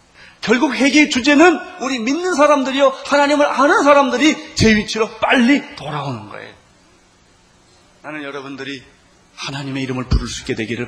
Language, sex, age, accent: Korean, male, 30-49, native